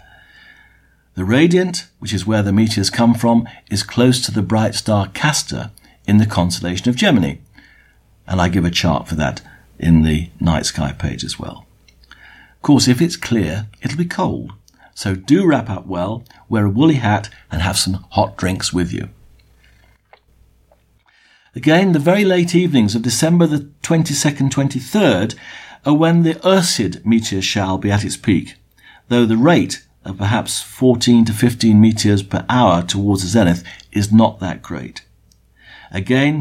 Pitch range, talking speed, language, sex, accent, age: 95-130 Hz, 160 wpm, English, male, British, 50-69